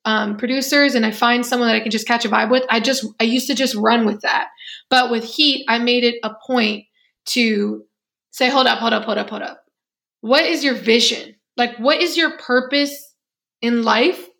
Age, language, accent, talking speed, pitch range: 20-39, English, American, 215 wpm, 235-270 Hz